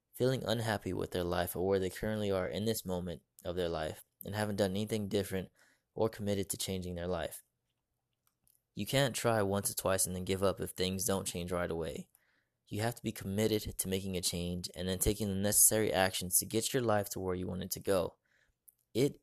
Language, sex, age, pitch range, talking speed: English, male, 20-39, 95-110 Hz, 220 wpm